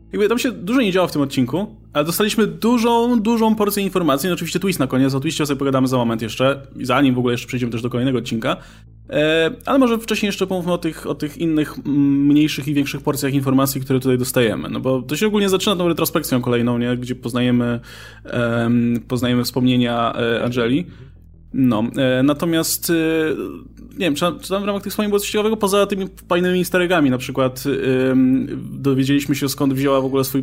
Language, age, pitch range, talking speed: Polish, 20-39, 125-175 Hz, 200 wpm